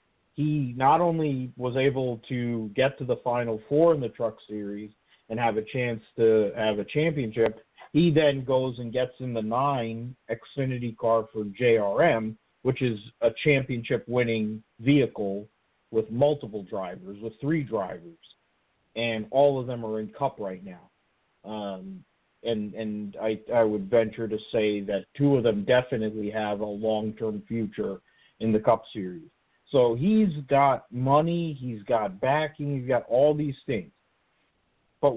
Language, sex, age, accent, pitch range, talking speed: English, male, 50-69, American, 110-140 Hz, 155 wpm